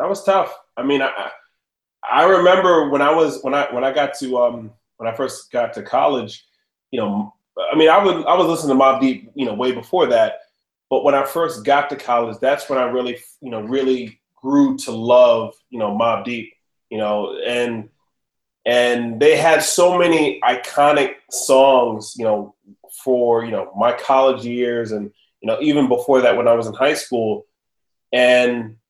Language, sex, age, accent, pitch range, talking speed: English, male, 20-39, American, 115-150 Hz, 195 wpm